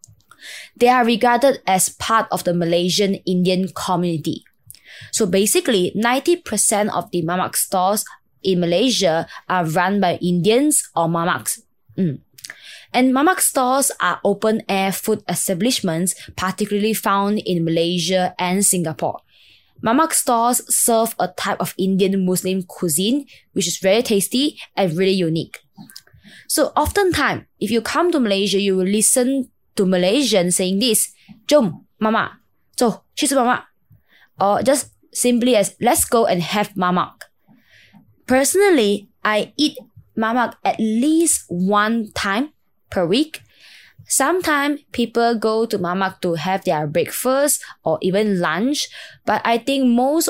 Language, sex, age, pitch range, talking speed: English, female, 20-39, 185-245 Hz, 130 wpm